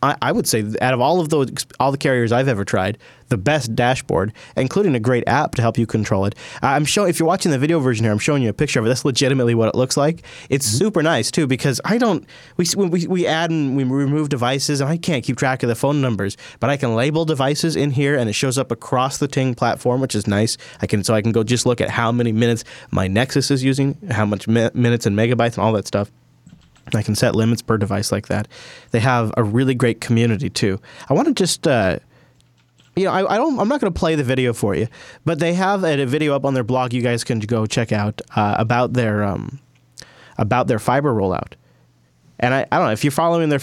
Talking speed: 250 wpm